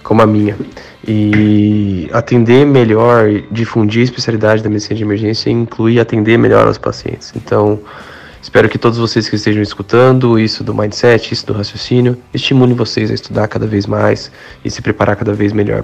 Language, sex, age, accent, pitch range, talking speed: Portuguese, male, 20-39, Brazilian, 105-125 Hz, 175 wpm